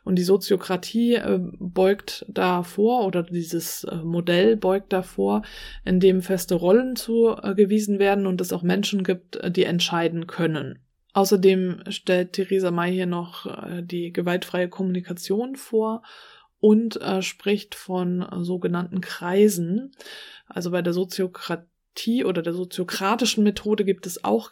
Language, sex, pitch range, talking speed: German, female, 180-205 Hz, 120 wpm